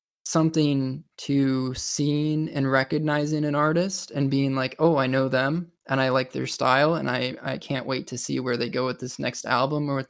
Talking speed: 210 wpm